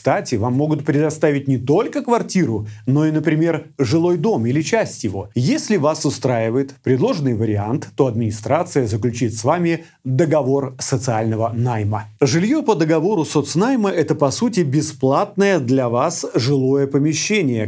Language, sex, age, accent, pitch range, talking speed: Russian, male, 30-49, native, 125-165 Hz, 140 wpm